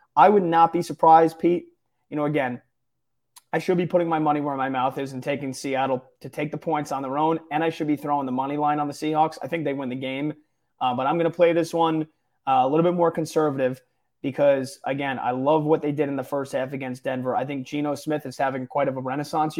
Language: English